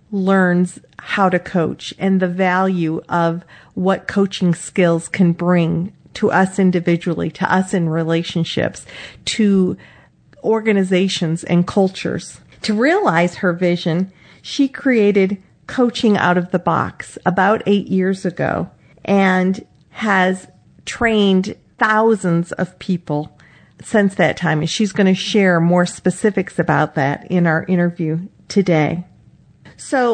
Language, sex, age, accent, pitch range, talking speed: English, female, 50-69, American, 175-210 Hz, 125 wpm